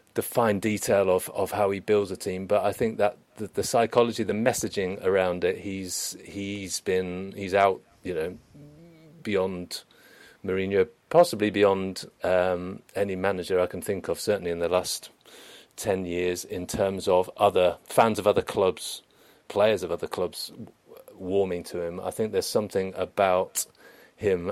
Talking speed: 160 wpm